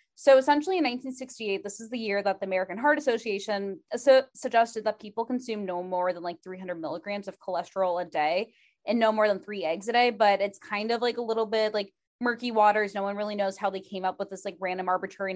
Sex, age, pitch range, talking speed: female, 20-39, 185-230 Hz, 230 wpm